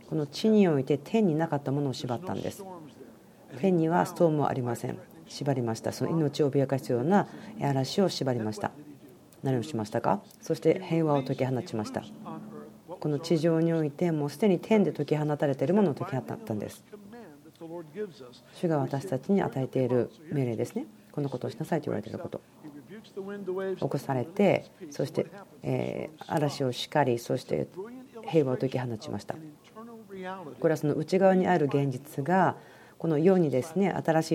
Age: 40-59